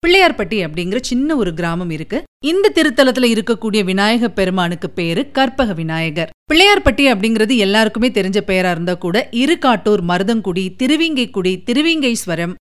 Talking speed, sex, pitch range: 120 wpm, female, 195-280 Hz